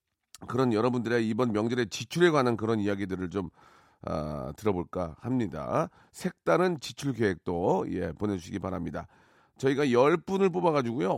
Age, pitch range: 40-59, 95-130 Hz